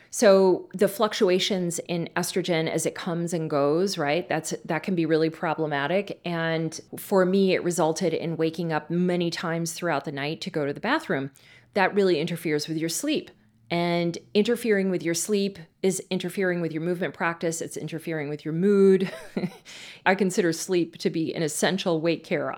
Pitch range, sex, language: 155-190 Hz, female, English